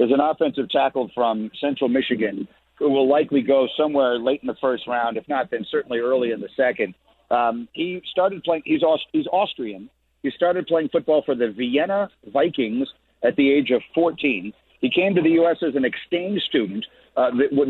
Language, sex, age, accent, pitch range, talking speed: English, male, 50-69, American, 125-160 Hz, 185 wpm